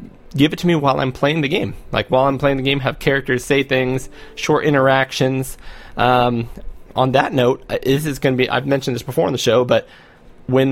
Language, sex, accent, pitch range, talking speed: English, male, American, 125-145 Hz, 220 wpm